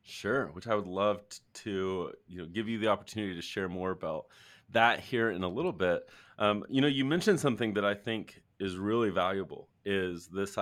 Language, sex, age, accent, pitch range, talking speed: English, male, 30-49, American, 95-115 Hz, 205 wpm